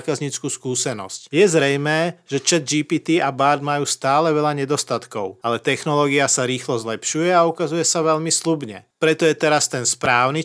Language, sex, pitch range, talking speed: Slovak, male, 125-155 Hz, 160 wpm